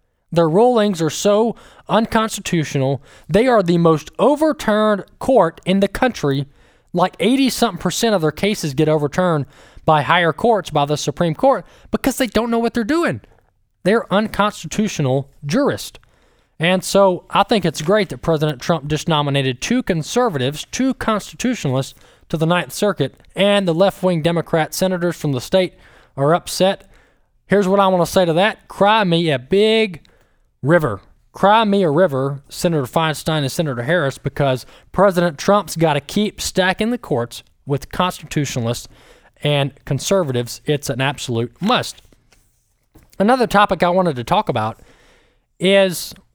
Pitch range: 150-205 Hz